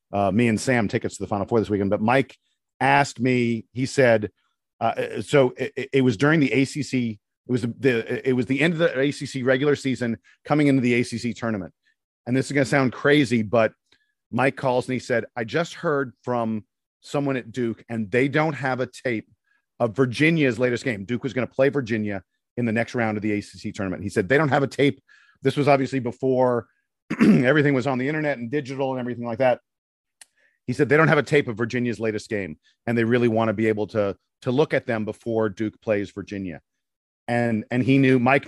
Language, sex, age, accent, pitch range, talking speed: English, male, 40-59, American, 110-135 Hz, 220 wpm